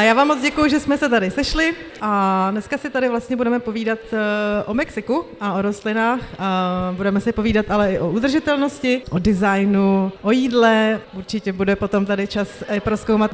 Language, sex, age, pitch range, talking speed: Czech, female, 30-49, 215-260 Hz, 175 wpm